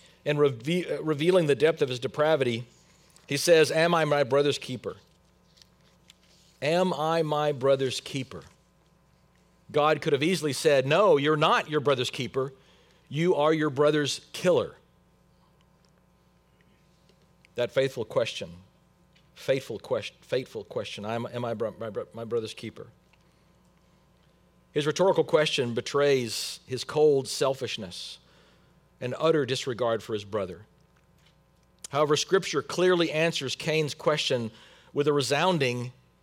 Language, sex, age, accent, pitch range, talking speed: English, male, 50-69, American, 130-175 Hz, 115 wpm